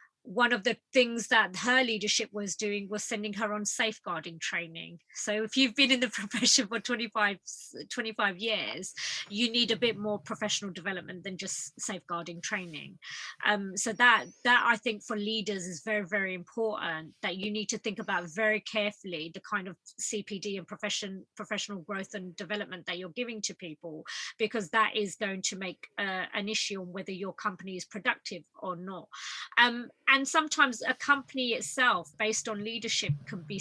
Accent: British